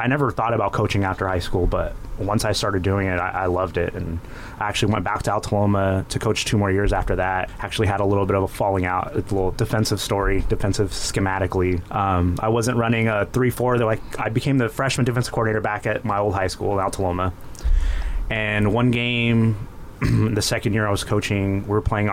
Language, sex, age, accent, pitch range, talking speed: English, male, 30-49, American, 95-120 Hz, 220 wpm